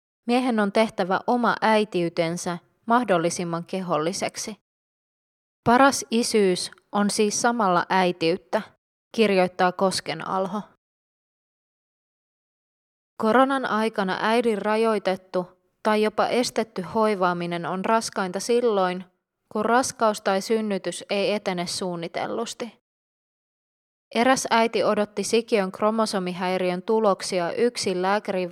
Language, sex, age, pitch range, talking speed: Finnish, female, 20-39, 180-220 Hz, 90 wpm